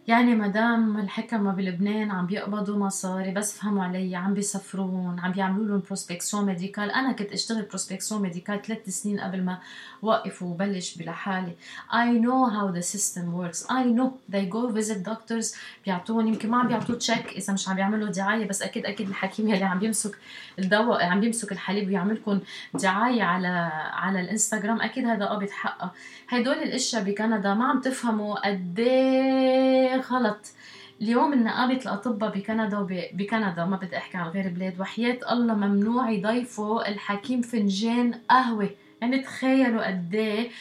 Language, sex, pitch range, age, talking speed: Arabic, female, 200-240 Hz, 20-39, 150 wpm